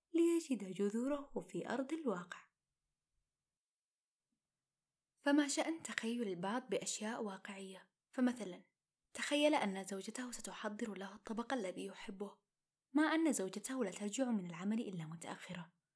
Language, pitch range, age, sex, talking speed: Arabic, 190-285 Hz, 20-39, female, 110 wpm